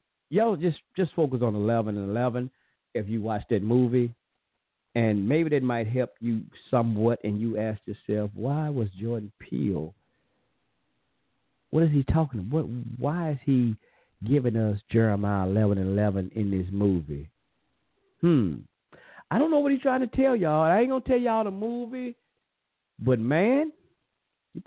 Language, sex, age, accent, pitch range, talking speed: English, male, 50-69, American, 110-185 Hz, 160 wpm